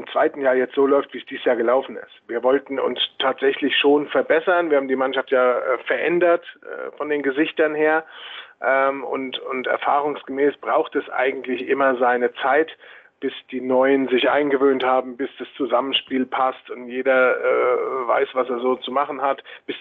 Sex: male